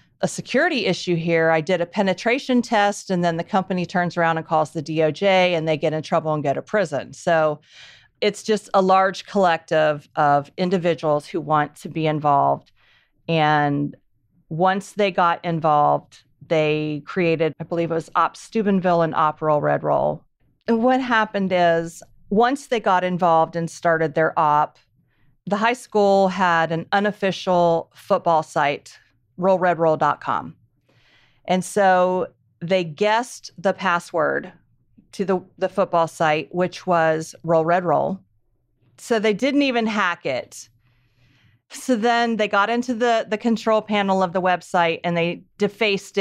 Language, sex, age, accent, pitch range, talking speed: English, female, 40-59, American, 160-195 Hz, 150 wpm